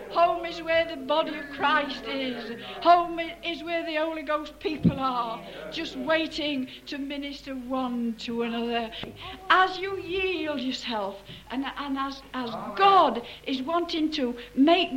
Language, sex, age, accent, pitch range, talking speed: English, female, 60-79, British, 245-345 Hz, 145 wpm